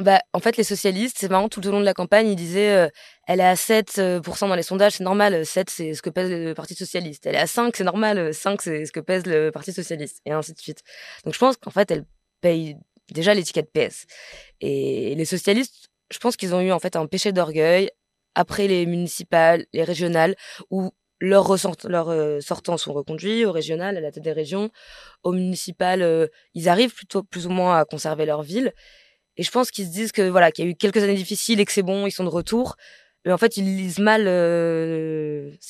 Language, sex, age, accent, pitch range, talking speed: French, female, 20-39, French, 165-200 Hz, 230 wpm